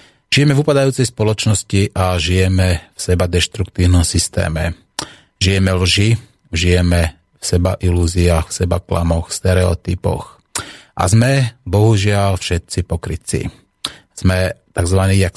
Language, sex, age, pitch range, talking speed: Slovak, male, 30-49, 90-100 Hz, 110 wpm